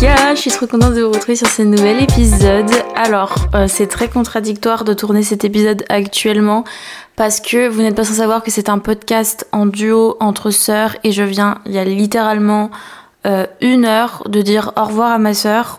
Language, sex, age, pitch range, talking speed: French, female, 20-39, 205-245 Hz, 205 wpm